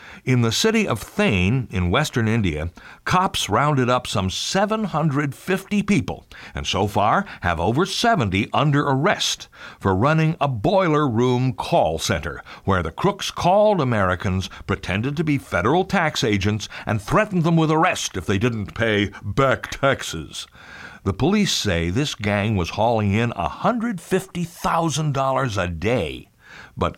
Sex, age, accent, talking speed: male, 60-79, American, 140 wpm